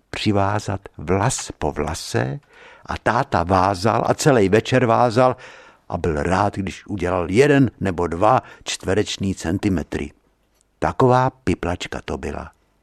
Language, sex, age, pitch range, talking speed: Czech, male, 60-79, 95-130 Hz, 115 wpm